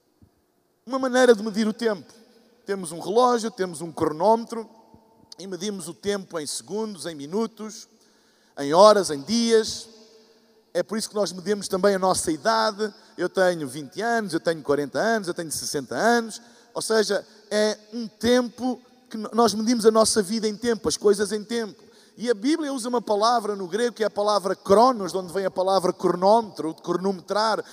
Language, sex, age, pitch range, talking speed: Portuguese, male, 50-69, 205-260 Hz, 180 wpm